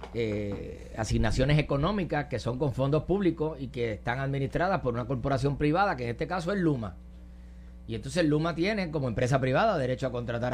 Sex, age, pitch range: male, 30-49, 120-160 Hz